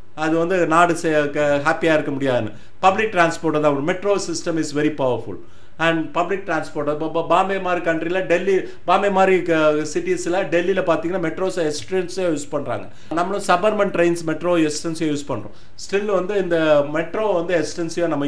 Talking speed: 150 wpm